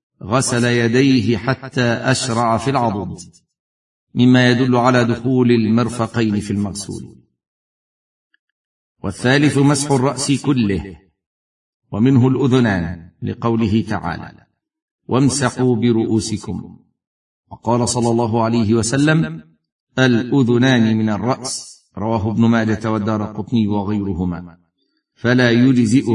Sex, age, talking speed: male, 50-69, 85 wpm